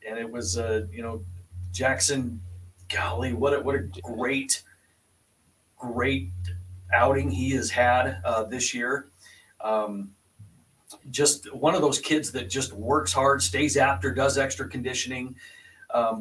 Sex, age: male, 40-59